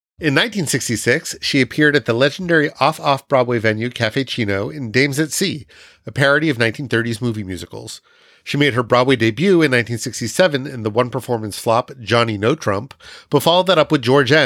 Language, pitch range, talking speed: English, 115-150 Hz, 175 wpm